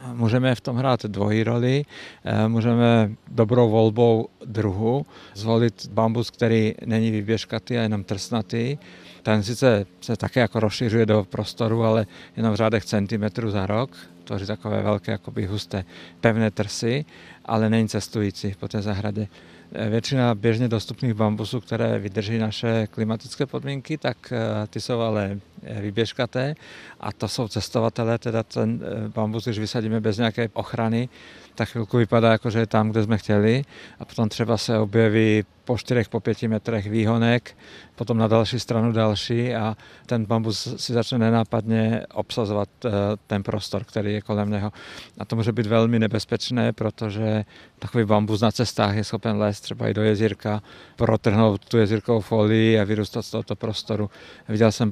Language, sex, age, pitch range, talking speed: Czech, male, 50-69, 105-115 Hz, 150 wpm